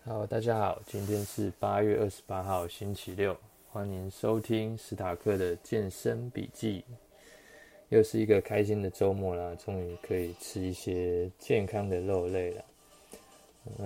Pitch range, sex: 90-110 Hz, male